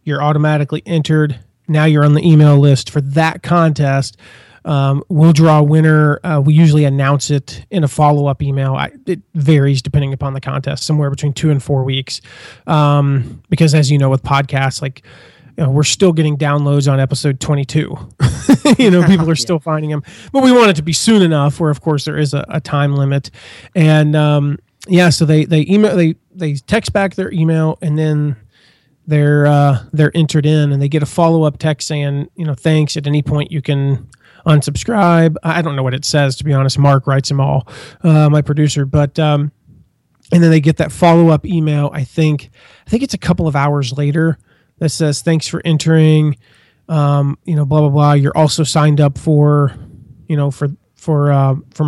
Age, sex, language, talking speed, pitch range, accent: 30-49, male, English, 200 wpm, 140-160 Hz, American